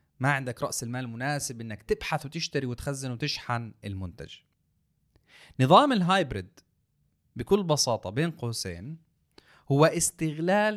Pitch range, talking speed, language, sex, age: 120-170 Hz, 105 wpm, Arabic, male, 30-49